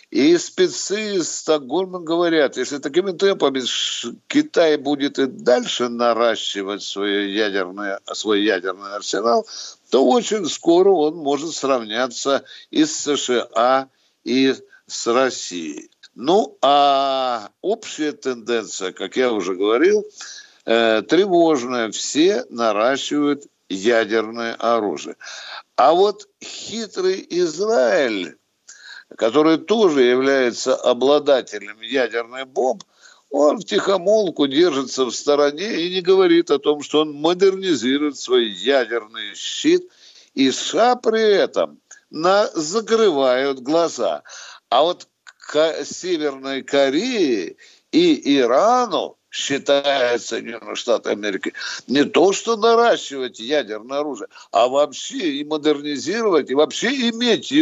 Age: 60-79